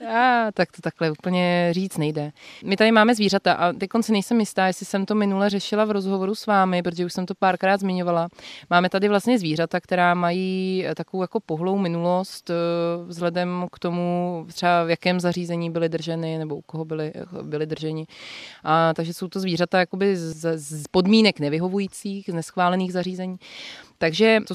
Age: 20-39